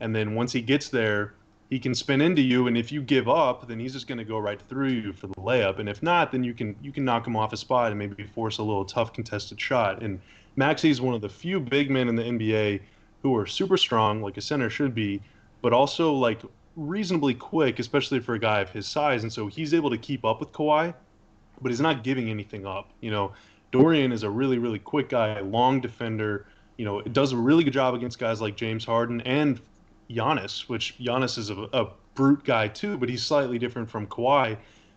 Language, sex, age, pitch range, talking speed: English, male, 20-39, 105-135 Hz, 235 wpm